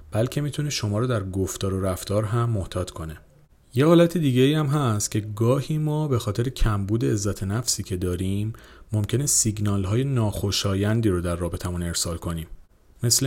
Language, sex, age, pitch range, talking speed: Persian, male, 40-59, 95-120 Hz, 165 wpm